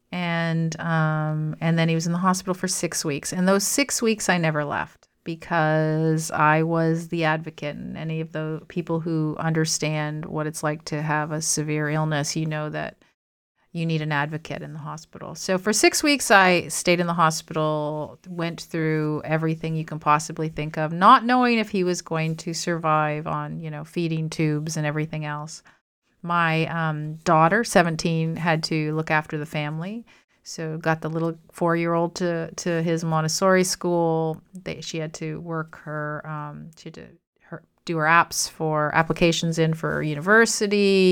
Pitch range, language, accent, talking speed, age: 155-180 Hz, English, American, 175 wpm, 40-59